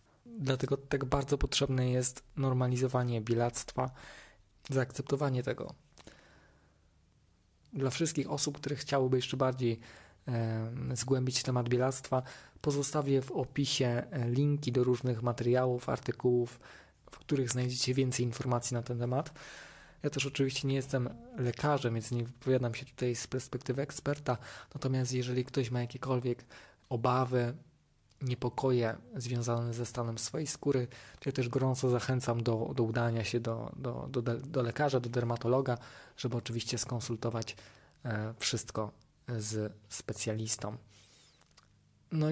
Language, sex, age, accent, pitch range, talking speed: Polish, male, 20-39, native, 115-135 Hz, 120 wpm